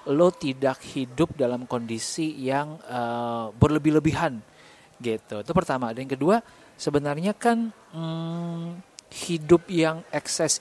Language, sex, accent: Indonesian, male, native